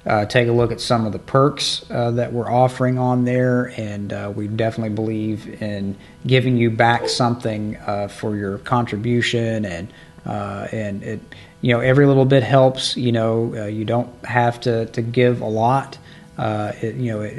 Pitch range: 105-125 Hz